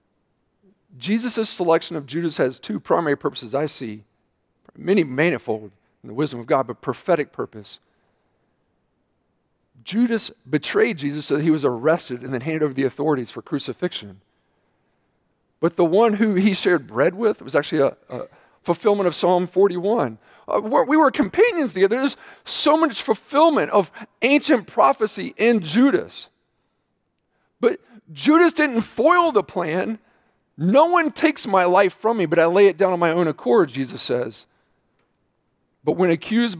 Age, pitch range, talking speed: 40-59, 140-215 Hz, 155 wpm